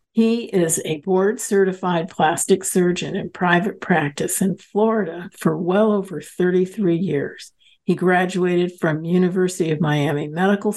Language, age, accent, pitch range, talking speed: English, 50-69, American, 160-195 Hz, 130 wpm